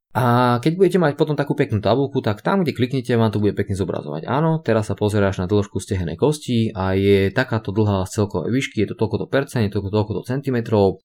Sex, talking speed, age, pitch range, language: male, 215 wpm, 20-39, 95-120 Hz, Slovak